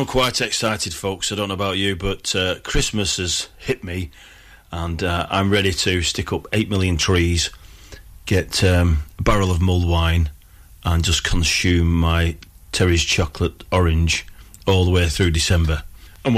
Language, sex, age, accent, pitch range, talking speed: English, male, 40-59, British, 85-105 Hz, 160 wpm